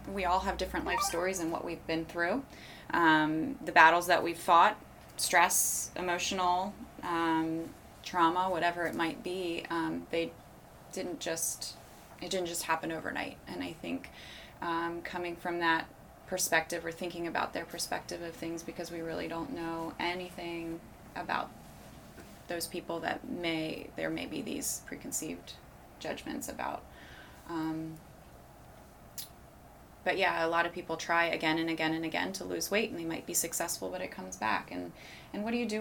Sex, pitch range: female, 160-180 Hz